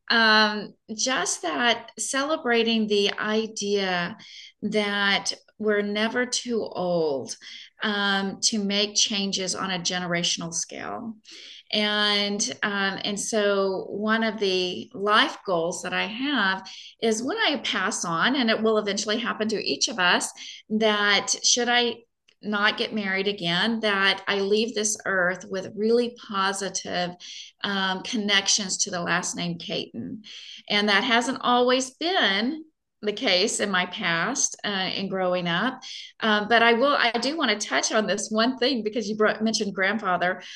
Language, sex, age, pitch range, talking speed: English, female, 30-49, 195-230 Hz, 145 wpm